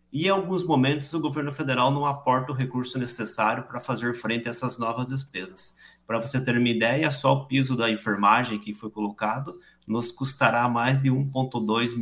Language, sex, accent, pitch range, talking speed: Portuguese, male, Brazilian, 115-140 Hz, 185 wpm